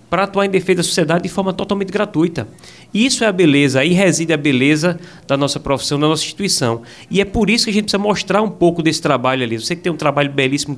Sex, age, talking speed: male, 20-39, 250 wpm